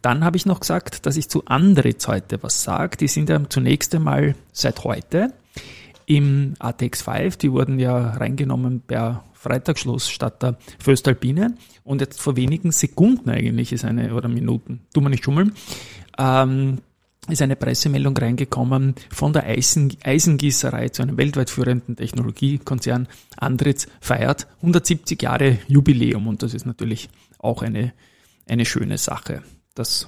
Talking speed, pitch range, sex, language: 145 wpm, 120-145 Hz, male, German